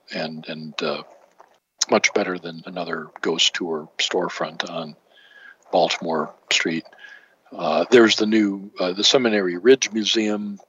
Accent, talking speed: American, 125 wpm